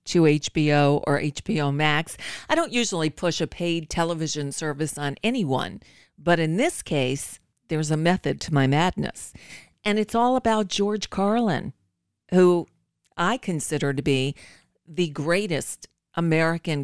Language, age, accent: English, 50-69, American